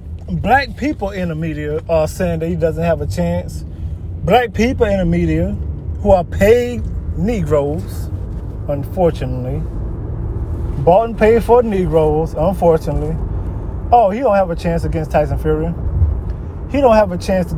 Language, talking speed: English, 150 wpm